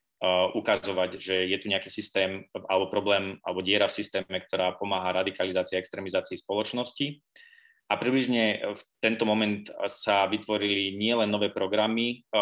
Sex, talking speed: male, 135 wpm